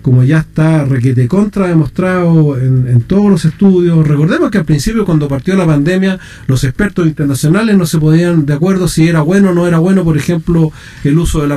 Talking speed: 215 wpm